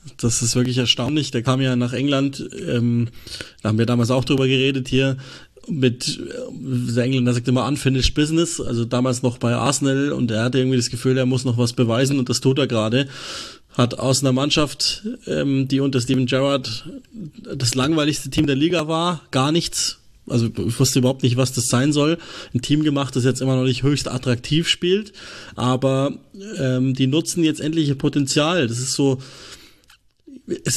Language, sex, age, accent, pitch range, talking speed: German, male, 30-49, German, 130-160 Hz, 185 wpm